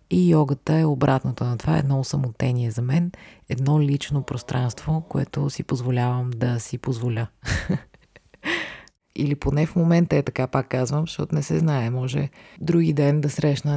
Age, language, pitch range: 30-49, Bulgarian, 135-160 Hz